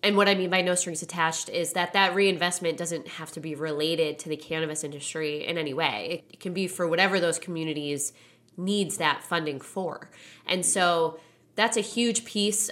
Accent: American